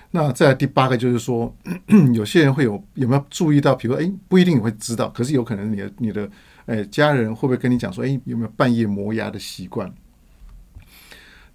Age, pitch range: 50-69, 105-135 Hz